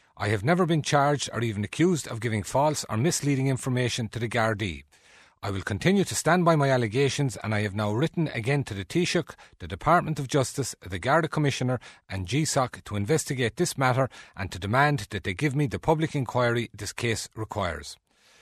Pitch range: 115-150 Hz